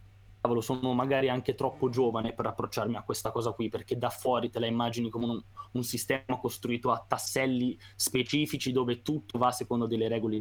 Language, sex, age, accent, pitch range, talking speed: Italian, male, 20-39, native, 105-125 Hz, 180 wpm